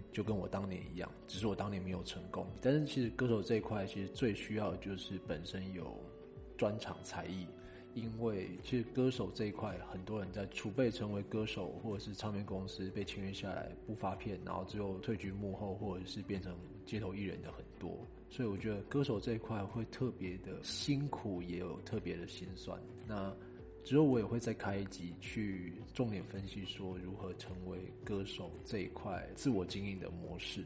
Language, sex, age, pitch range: Chinese, male, 20-39, 95-110 Hz